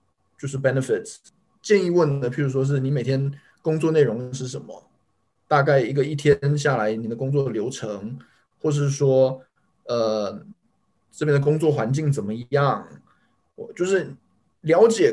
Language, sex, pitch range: Chinese, male, 135-180 Hz